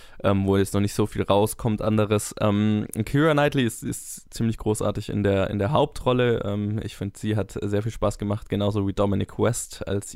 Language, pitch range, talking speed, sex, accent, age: German, 105-120 Hz, 205 wpm, male, German, 20-39